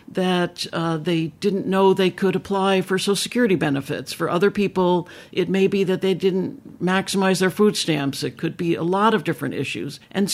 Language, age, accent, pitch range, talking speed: English, 60-79, American, 155-200 Hz, 195 wpm